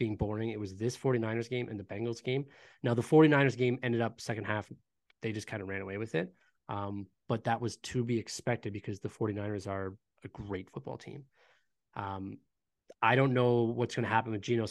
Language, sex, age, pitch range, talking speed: English, male, 20-39, 105-125 Hz, 210 wpm